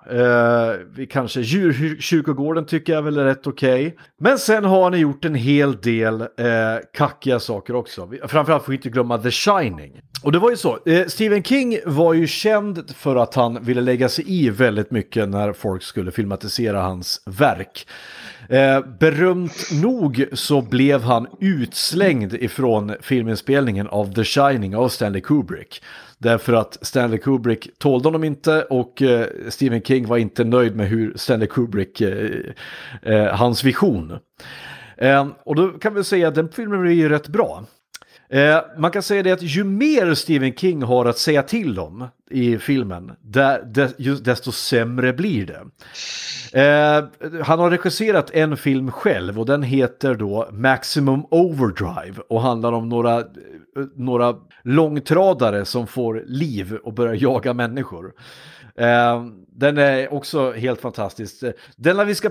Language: Swedish